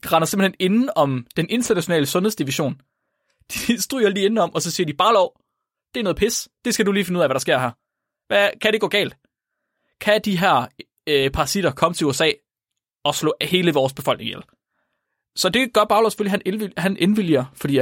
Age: 20-39